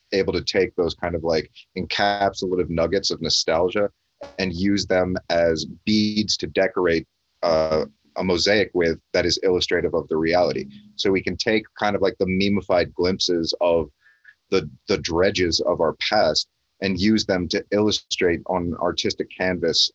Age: 30-49